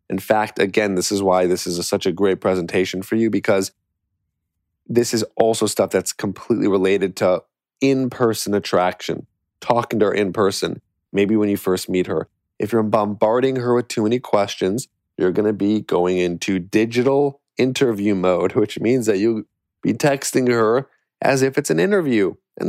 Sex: male